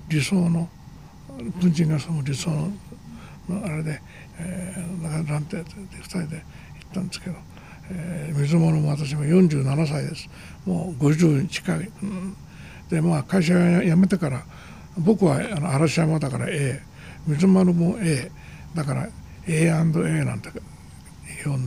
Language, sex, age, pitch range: Japanese, male, 60-79, 150-180 Hz